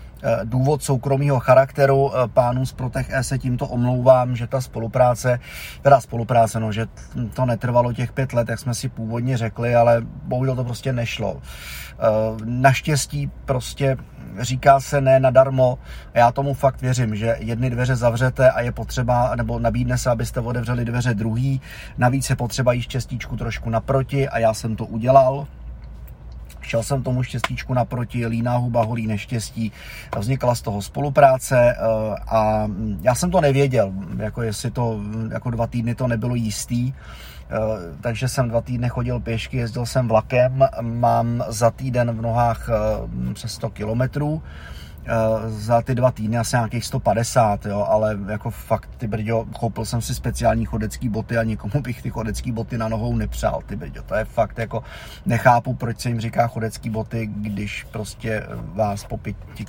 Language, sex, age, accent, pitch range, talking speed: Czech, male, 30-49, native, 110-130 Hz, 160 wpm